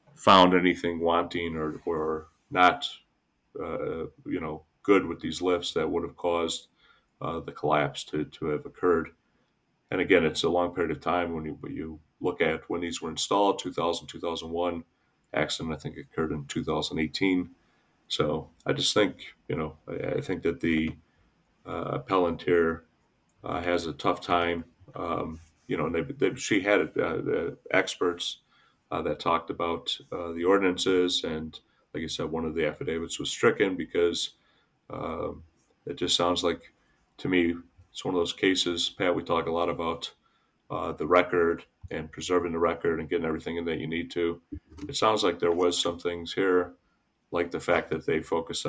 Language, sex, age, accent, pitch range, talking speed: English, male, 40-59, American, 80-90 Hz, 180 wpm